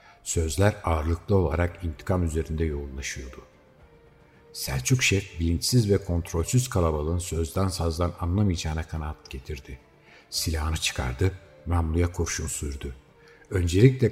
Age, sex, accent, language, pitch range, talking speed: 60-79, male, native, Turkish, 85-110 Hz, 100 wpm